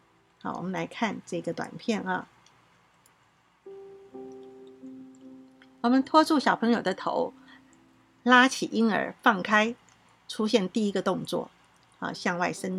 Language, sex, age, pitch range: Chinese, female, 50-69, 190-265 Hz